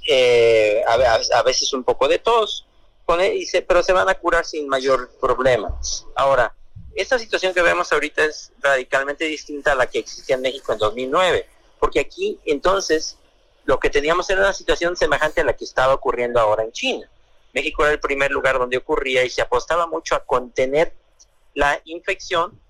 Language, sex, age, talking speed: Spanish, male, 50-69, 175 wpm